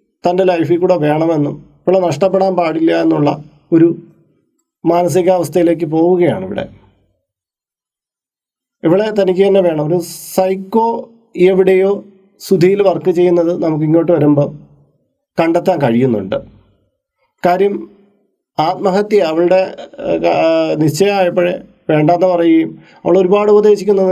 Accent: native